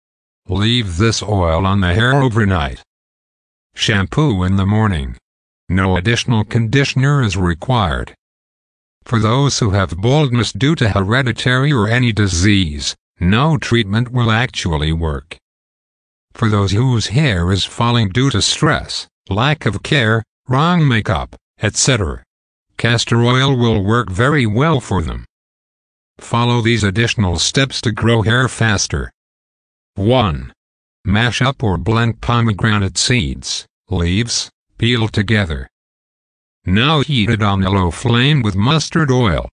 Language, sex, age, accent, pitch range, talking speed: English, male, 60-79, American, 90-120 Hz, 125 wpm